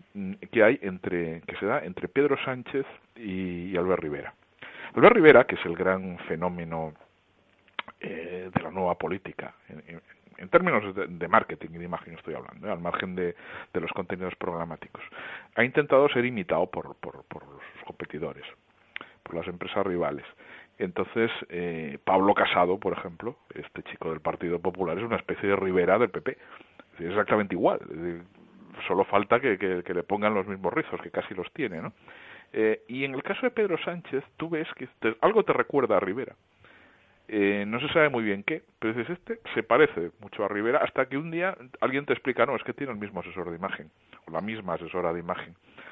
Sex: male